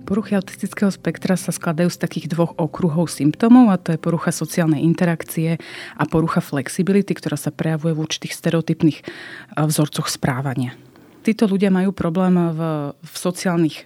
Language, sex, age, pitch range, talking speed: Slovak, female, 30-49, 160-180 Hz, 145 wpm